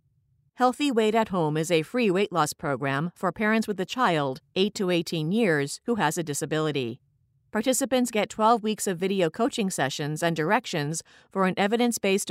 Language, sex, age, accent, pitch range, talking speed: English, female, 50-69, American, 150-215 Hz, 175 wpm